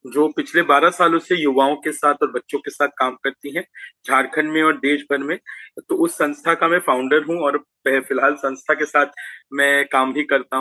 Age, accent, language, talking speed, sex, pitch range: 30-49, native, Hindi, 210 wpm, male, 140-180 Hz